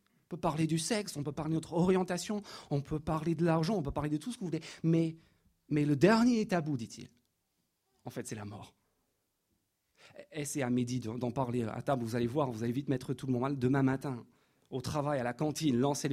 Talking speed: 235 wpm